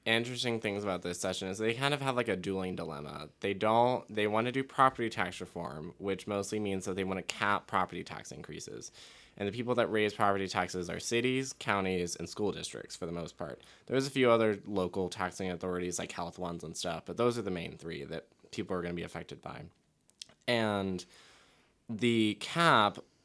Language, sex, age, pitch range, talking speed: English, male, 20-39, 90-115 Hz, 205 wpm